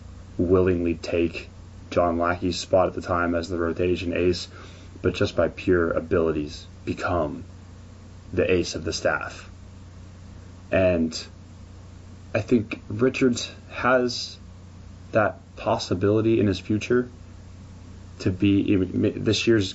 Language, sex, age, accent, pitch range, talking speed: English, male, 20-39, American, 90-100 Hz, 120 wpm